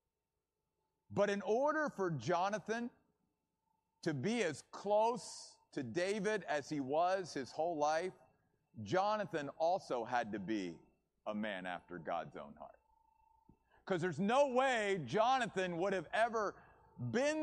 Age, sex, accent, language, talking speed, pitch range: 50-69, male, American, English, 125 wpm, 160-235 Hz